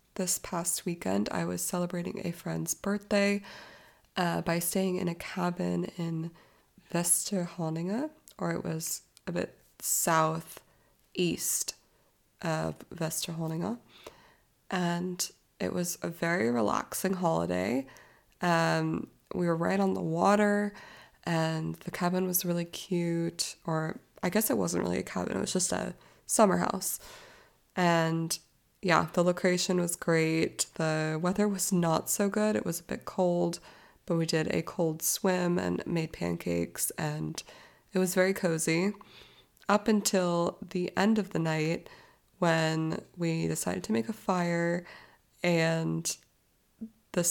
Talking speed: 135 wpm